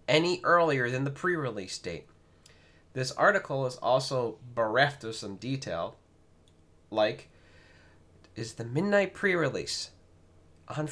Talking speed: 110 wpm